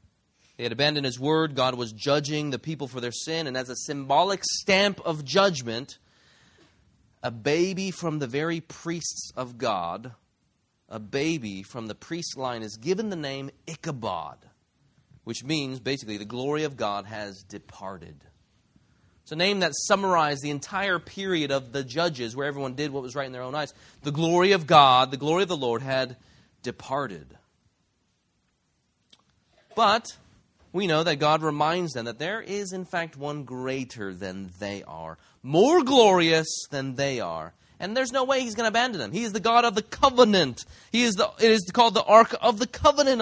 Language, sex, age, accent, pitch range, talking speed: English, male, 30-49, American, 120-185 Hz, 180 wpm